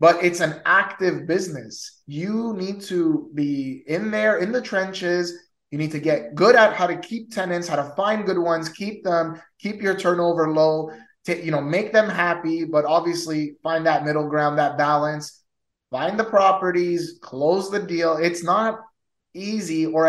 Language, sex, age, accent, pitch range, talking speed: English, male, 20-39, American, 155-195 Hz, 175 wpm